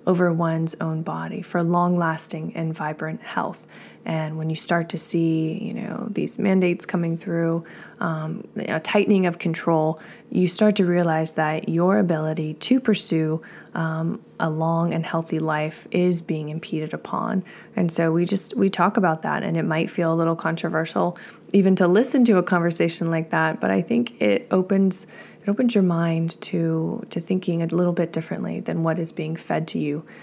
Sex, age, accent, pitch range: female, 20-39, American, 165-190 Hz